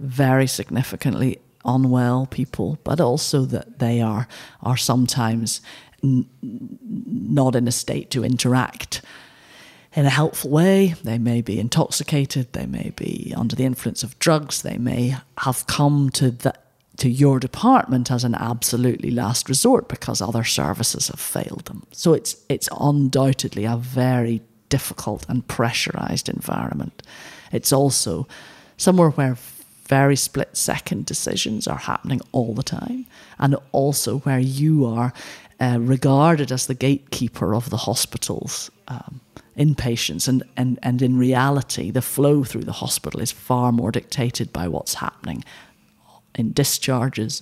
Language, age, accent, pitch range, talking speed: English, 40-59, British, 120-140 Hz, 140 wpm